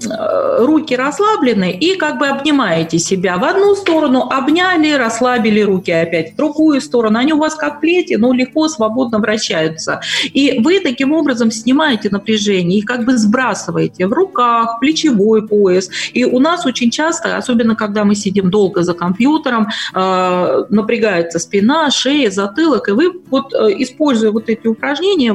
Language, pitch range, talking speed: Russian, 195-270 Hz, 150 wpm